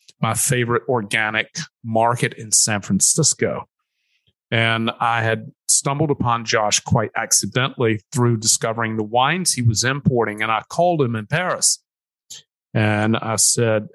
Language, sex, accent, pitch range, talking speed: English, male, American, 115-150 Hz, 135 wpm